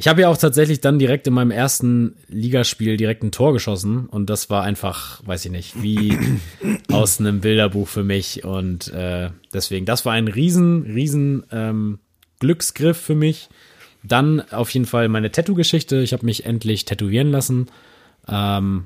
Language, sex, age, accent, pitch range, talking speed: German, male, 20-39, German, 100-120 Hz, 170 wpm